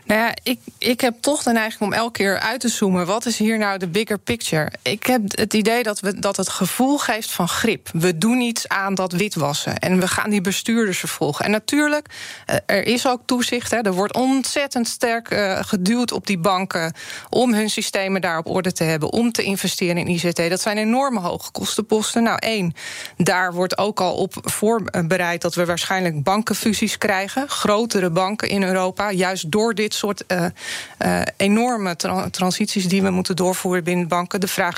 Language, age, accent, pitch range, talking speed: Dutch, 20-39, Dutch, 185-230 Hz, 190 wpm